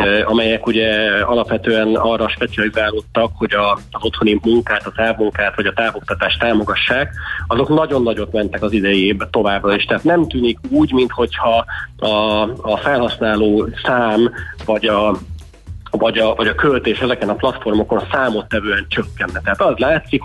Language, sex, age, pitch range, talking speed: Hungarian, male, 30-49, 105-115 Hz, 140 wpm